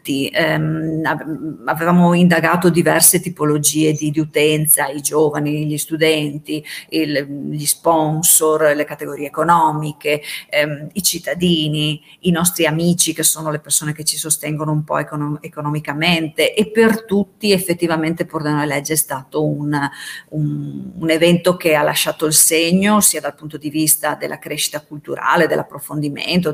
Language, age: Italian, 40-59